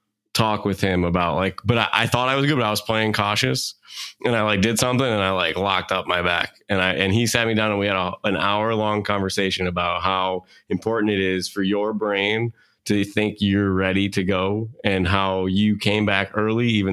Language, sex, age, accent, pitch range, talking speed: English, male, 20-39, American, 95-110 Hz, 225 wpm